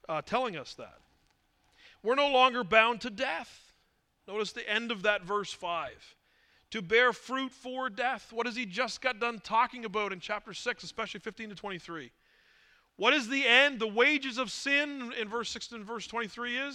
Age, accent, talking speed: 40-59, American, 185 wpm